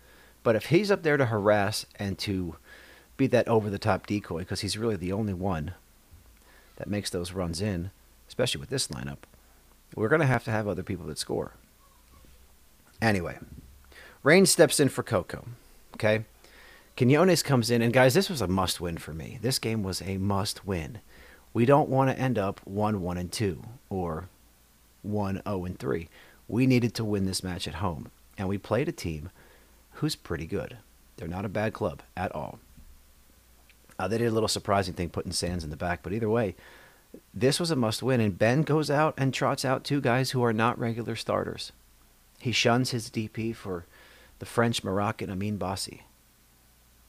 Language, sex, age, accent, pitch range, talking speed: English, male, 40-59, American, 90-120 Hz, 175 wpm